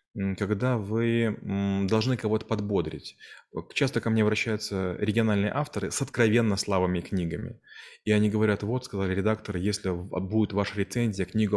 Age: 20-39